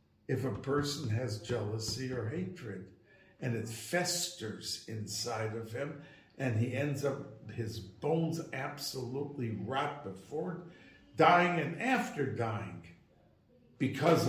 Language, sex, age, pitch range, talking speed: English, male, 60-79, 120-165 Hz, 115 wpm